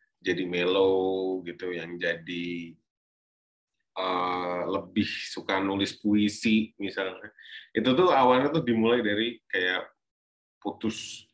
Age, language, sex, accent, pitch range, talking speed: 20-39, Indonesian, male, native, 95-120 Hz, 100 wpm